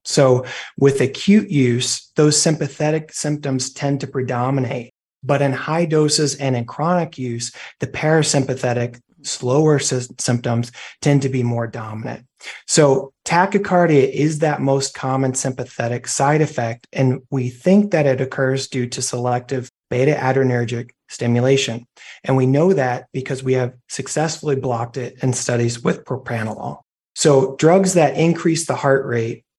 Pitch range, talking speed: 125-150 Hz, 140 wpm